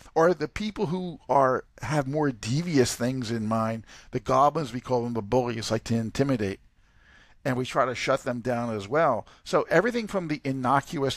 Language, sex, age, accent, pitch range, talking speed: English, male, 50-69, American, 120-155 Hz, 190 wpm